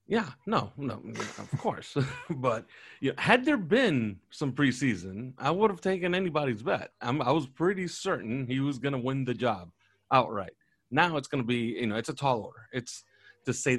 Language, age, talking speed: English, 30-49, 185 wpm